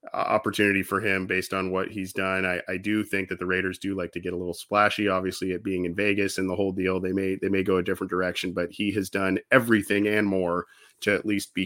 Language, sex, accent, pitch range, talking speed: English, male, American, 100-125 Hz, 260 wpm